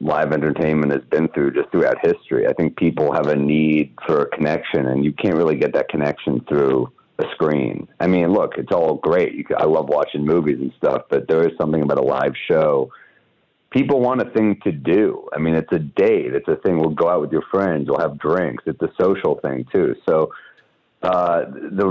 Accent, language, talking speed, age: American, English, 215 wpm, 40-59